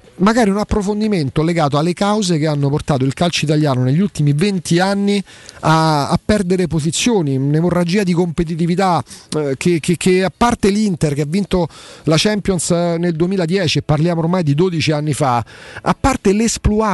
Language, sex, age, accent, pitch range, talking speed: Italian, male, 40-59, native, 140-185 Hz, 165 wpm